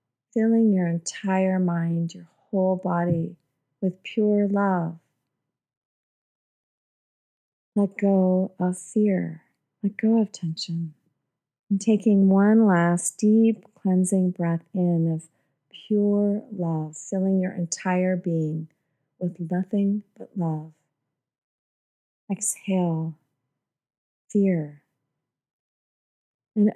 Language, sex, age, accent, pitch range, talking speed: English, female, 40-59, American, 160-190 Hz, 90 wpm